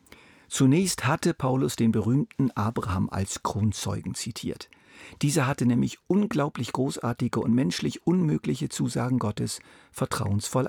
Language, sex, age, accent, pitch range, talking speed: German, male, 50-69, German, 105-130 Hz, 110 wpm